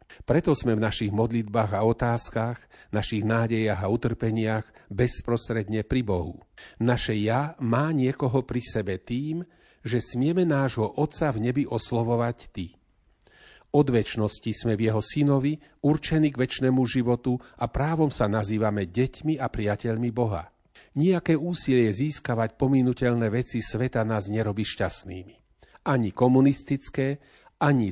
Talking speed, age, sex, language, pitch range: 125 wpm, 40-59, male, Slovak, 110-130 Hz